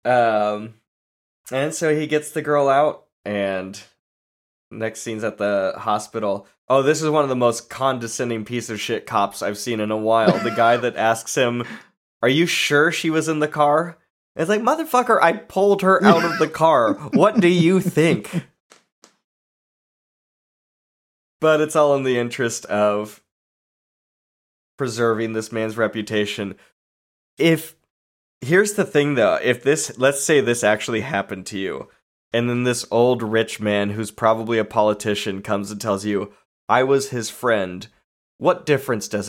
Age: 20-39